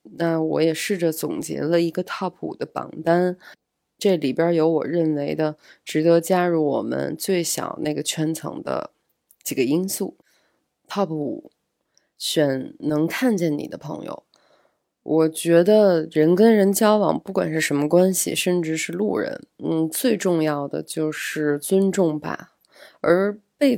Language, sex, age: Chinese, female, 20-39